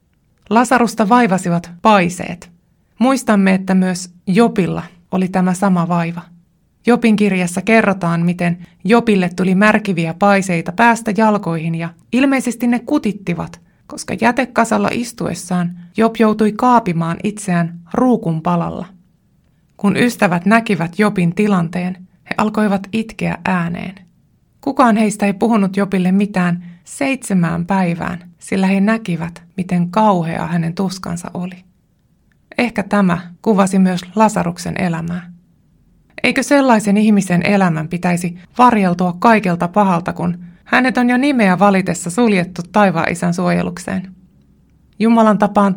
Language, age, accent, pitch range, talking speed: Finnish, 20-39, native, 175-220 Hz, 110 wpm